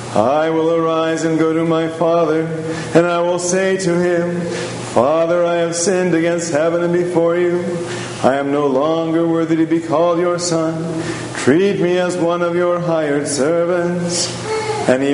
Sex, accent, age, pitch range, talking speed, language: male, American, 40-59, 160-175 Hz, 170 wpm, English